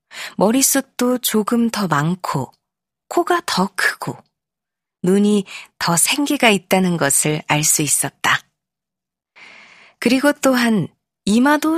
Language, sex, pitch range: Korean, female, 170-245 Hz